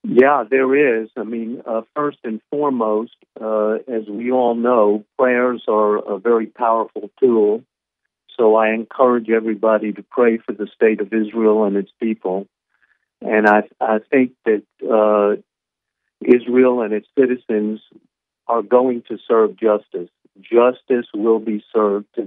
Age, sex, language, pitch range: 50-69, male, English, 105-120 Hz